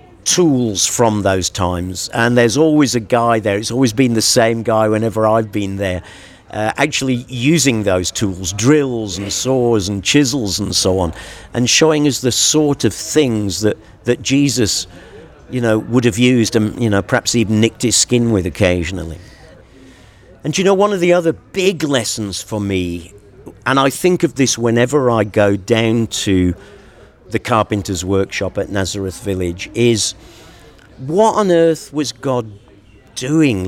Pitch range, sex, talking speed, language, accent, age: 100-130 Hz, male, 165 wpm, English, British, 50-69